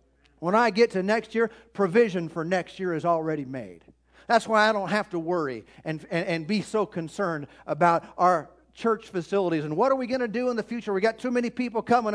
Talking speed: 225 wpm